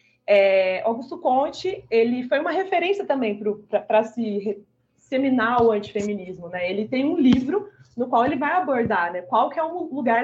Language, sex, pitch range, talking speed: Portuguese, female, 210-270 Hz, 170 wpm